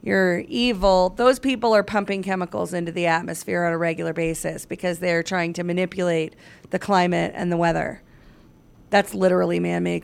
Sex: female